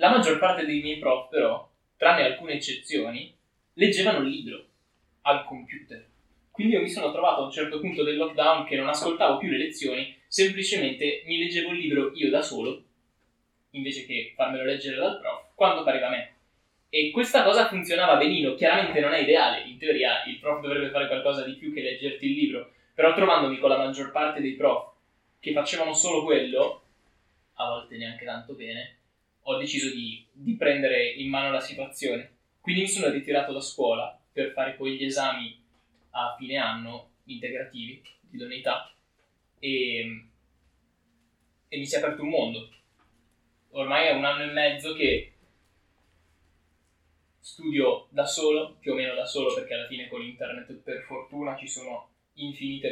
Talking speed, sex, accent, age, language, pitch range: 170 wpm, male, native, 20-39, Italian, 120-160 Hz